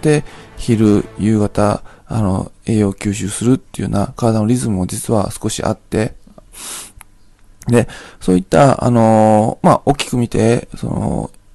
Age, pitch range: 20-39, 100-125 Hz